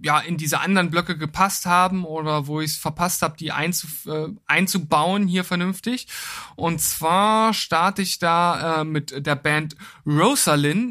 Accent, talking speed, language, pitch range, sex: German, 160 wpm, German, 155-190 Hz, male